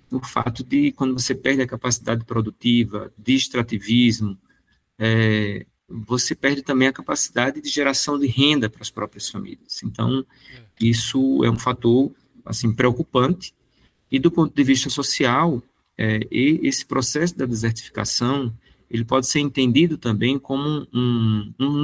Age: 40-59